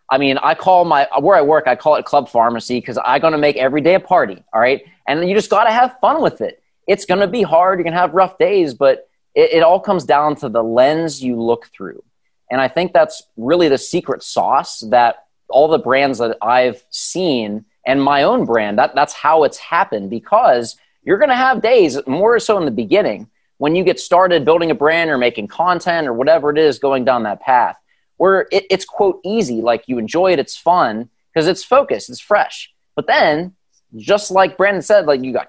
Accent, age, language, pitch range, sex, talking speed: American, 20-39, English, 130-190 Hz, male, 225 wpm